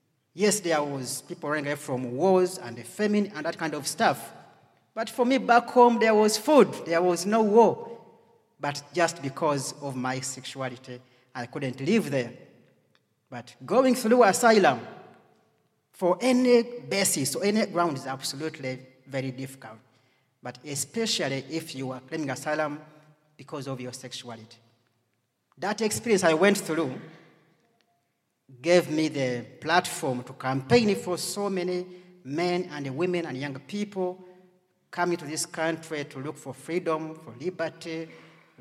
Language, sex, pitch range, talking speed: English, male, 135-185 Hz, 145 wpm